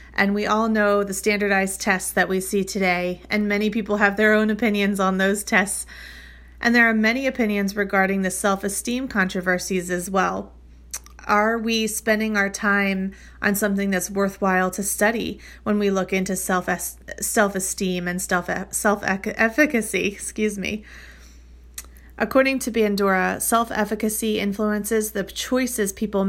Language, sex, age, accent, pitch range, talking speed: English, female, 30-49, American, 190-220 Hz, 140 wpm